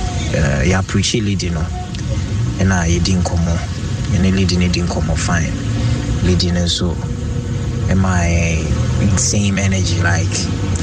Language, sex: English, male